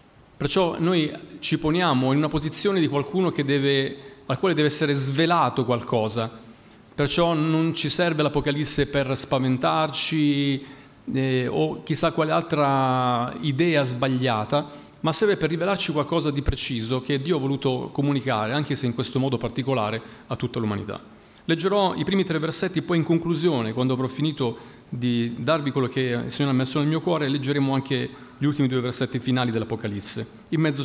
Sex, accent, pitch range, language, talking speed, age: male, native, 130-165 Hz, Italian, 160 wpm, 40-59